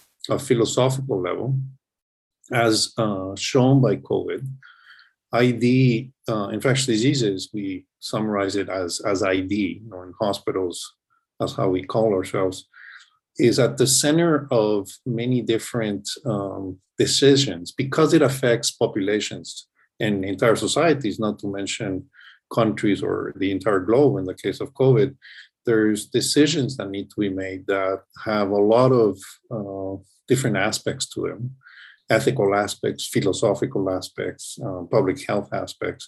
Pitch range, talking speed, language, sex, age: 95-130 Hz, 135 wpm, French, male, 50-69